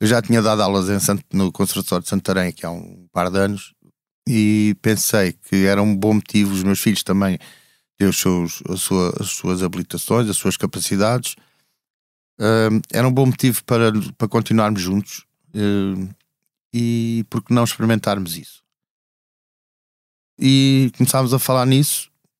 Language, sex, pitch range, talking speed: Portuguese, male, 95-130 Hz, 150 wpm